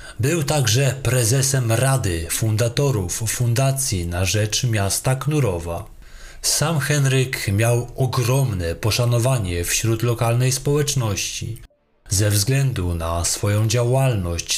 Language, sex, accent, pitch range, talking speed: Polish, male, native, 100-135 Hz, 95 wpm